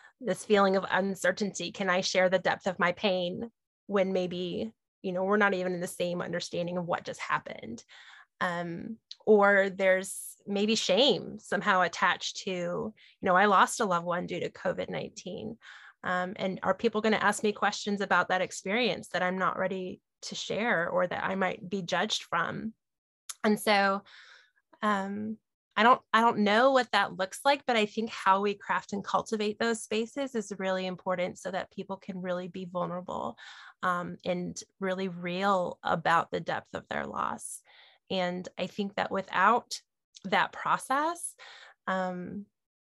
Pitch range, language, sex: 185-210 Hz, English, female